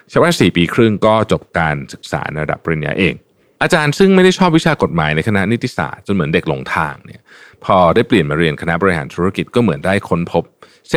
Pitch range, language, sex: 85-125 Hz, Thai, male